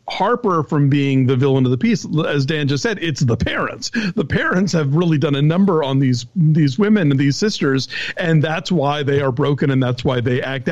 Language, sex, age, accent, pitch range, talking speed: English, male, 50-69, American, 135-170 Hz, 225 wpm